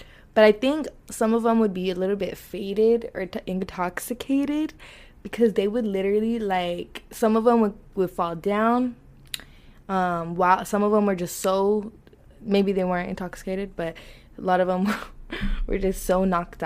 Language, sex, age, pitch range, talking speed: English, female, 20-39, 180-220 Hz, 175 wpm